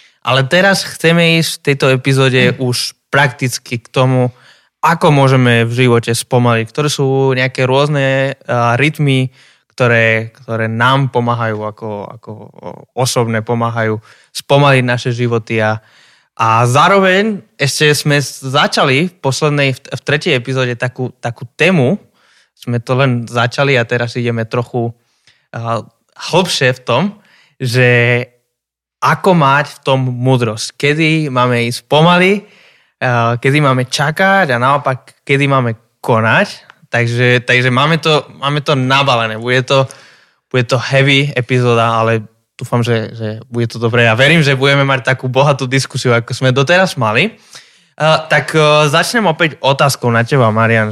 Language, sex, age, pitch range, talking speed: Slovak, male, 20-39, 120-145 Hz, 135 wpm